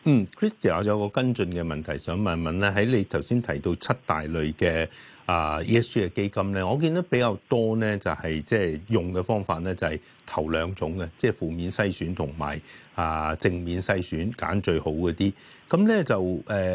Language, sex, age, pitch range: Chinese, male, 30-49, 85-115 Hz